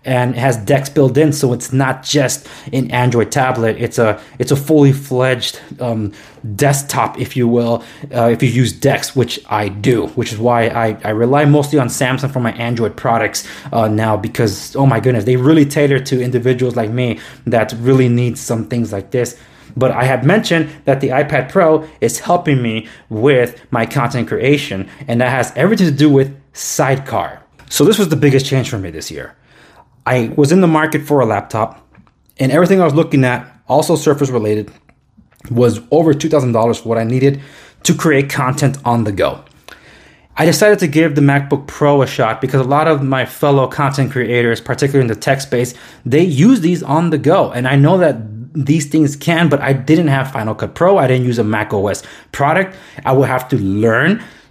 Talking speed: 195 wpm